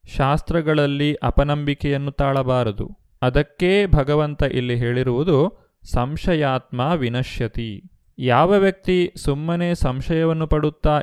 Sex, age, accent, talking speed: male, 30-49, native, 75 wpm